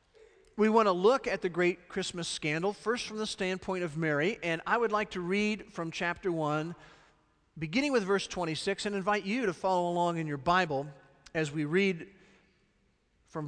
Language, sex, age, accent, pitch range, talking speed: English, male, 50-69, American, 155-215 Hz, 185 wpm